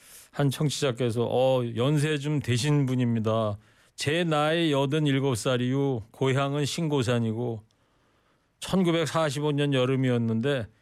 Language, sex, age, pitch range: Korean, male, 40-59, 115-155 Hz